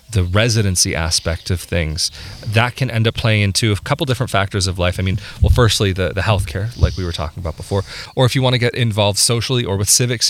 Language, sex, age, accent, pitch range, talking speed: English, male, 30-49, American, 95-115 Hz, 240 wpm